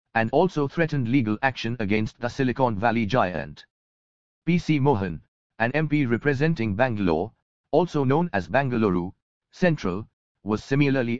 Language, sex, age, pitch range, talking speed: English, male, 50-69, 110-140 Hz, 125 wpm